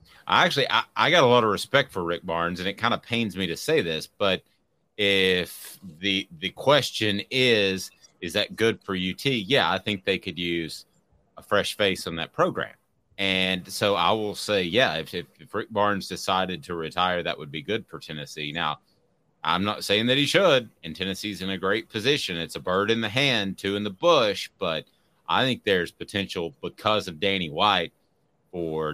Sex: male